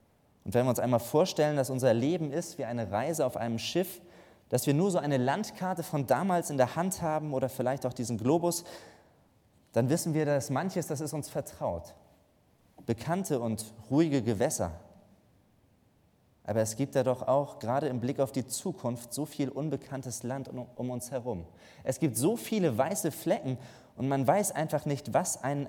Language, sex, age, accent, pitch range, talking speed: German, male, 20-39, German, 110-150 Hz, 180 wpm